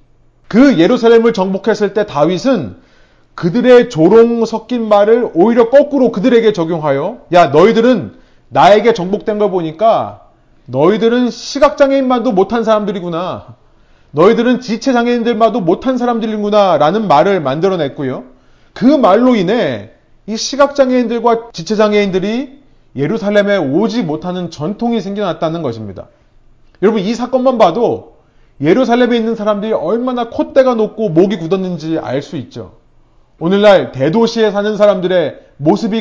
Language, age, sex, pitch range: Korean, 30-49, male, 175-235 Hz